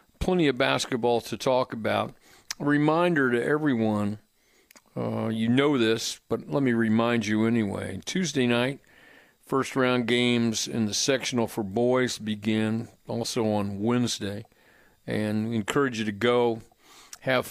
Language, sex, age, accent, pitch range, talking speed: English, male, 50-69, American, 110-130 Hz, 135 wpm